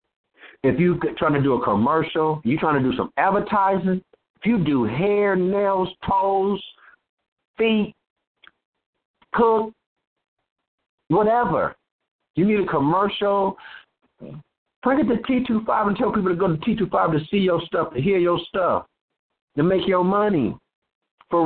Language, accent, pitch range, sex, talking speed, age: English, American, 140-200 Hz, male, 150 wpm, 60-79